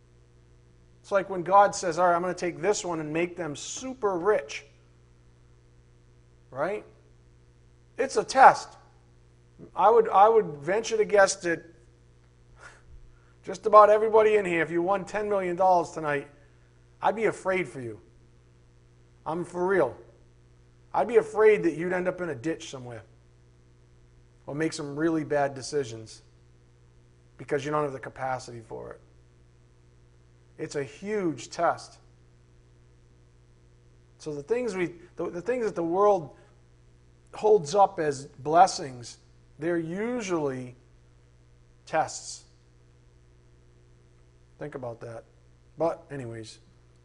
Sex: male